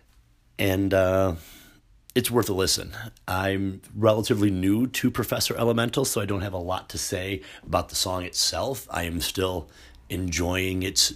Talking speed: 155 wpm